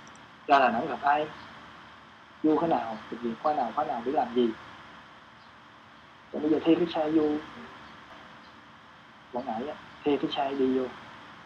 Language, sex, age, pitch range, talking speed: Vietnamese, male, 20-39, 105-165 Hz, 160 wpm